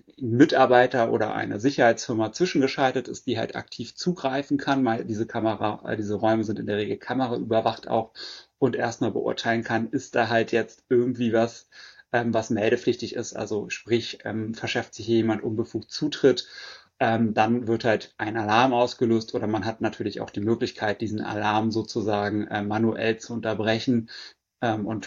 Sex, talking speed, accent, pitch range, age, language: male, 150 wpm, German, 110-125 Hz, 30-49, German